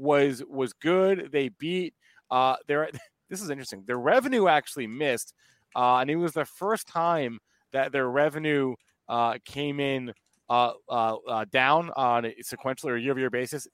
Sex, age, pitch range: male, 30-49, 120-155 Hz